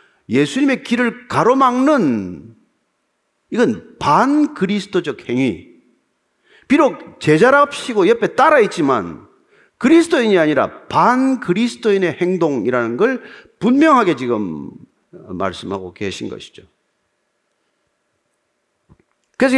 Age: 40-59